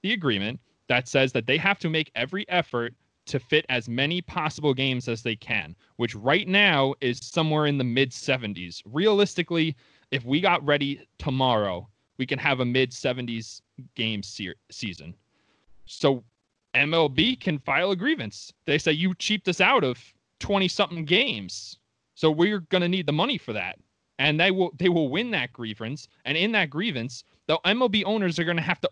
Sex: male